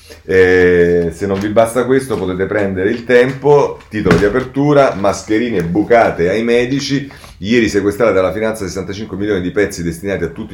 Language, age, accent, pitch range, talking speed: Italian, 30-49, native, 85-115 Hz, 160 wpm